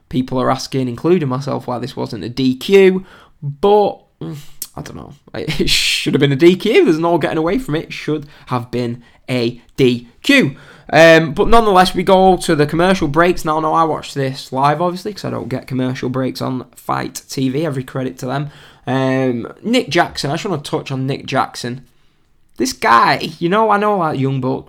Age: 10-29